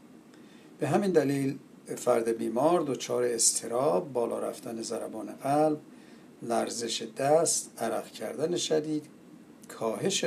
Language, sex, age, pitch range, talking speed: Persian, male, 60-79, 120-155 Hz, 100 wpm